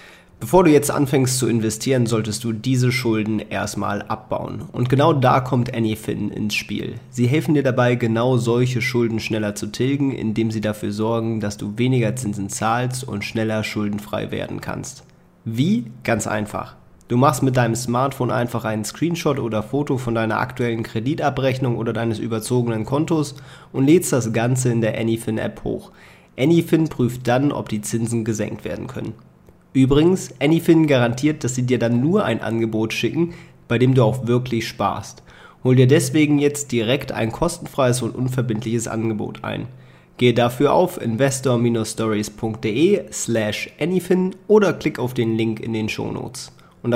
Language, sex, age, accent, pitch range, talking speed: German, male, 30-49, German, 110-135 Hz, 155 wpm